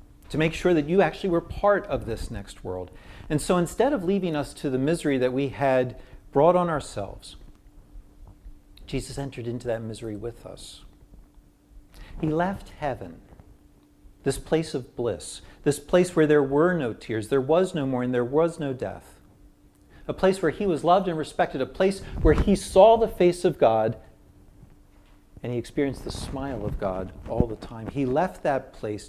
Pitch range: 100-145 Hz